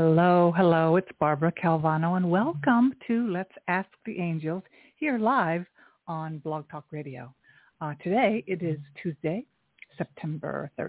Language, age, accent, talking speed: English, 60-79, American, 130 wpm